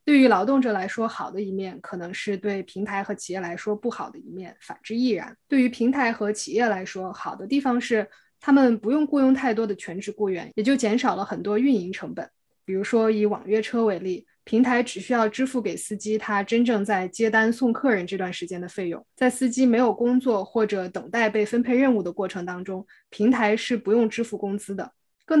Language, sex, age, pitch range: Chinese, female, 20-39, 195-240 Hz